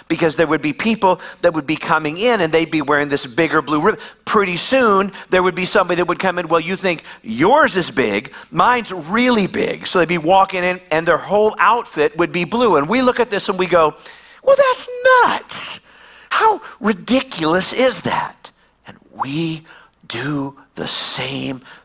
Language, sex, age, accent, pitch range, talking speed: English, male, 50-69, American, 140-190 Hz, 190 wpm